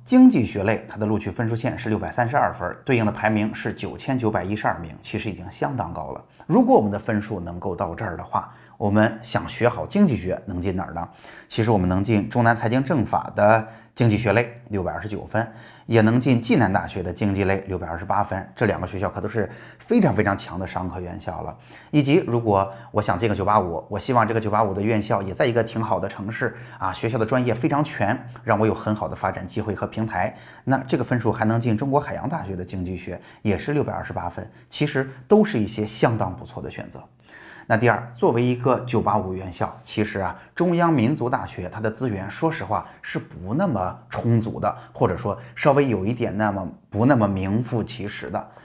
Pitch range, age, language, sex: 100-120 Hz, 30-49, Chinese, male